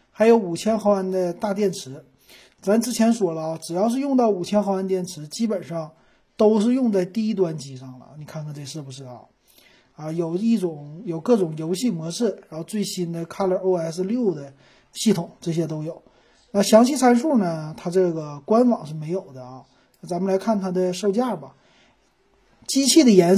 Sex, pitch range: male, 165-225 Hz